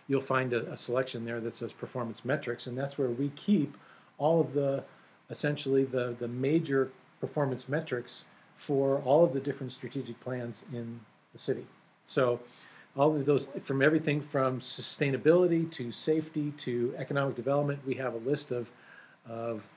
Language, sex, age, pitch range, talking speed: English, male, 40-59, 125-150 Hz, 160 wpm